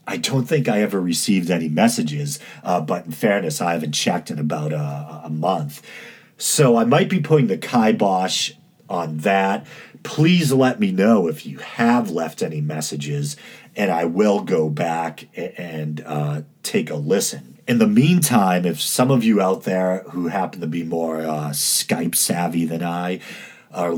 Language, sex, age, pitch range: English, male, 40-59, 75-95 Hz